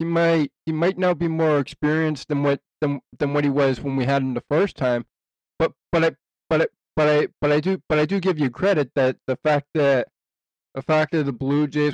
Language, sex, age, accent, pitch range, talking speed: English, male, 20-39, American, 120-145 Hz, 240 wpm